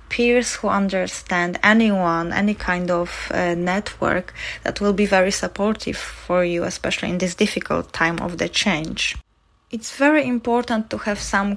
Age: 20-39